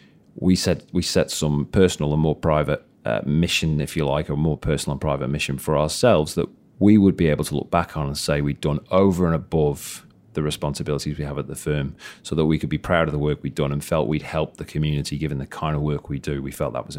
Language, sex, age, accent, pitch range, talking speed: English, male, 30-49, British, 75-90 Hz, 255 wpm